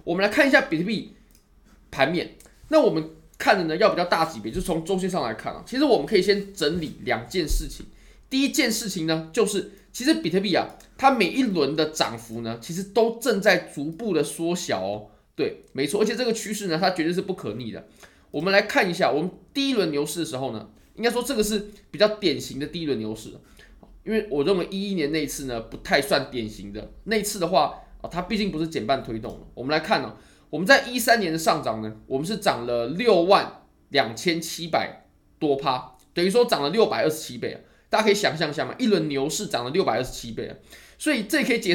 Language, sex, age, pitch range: Chinese, male, 20-39, 145-215 Hz